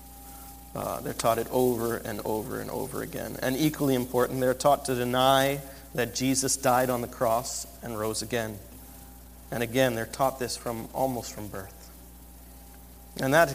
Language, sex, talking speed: English, male, 165 wpm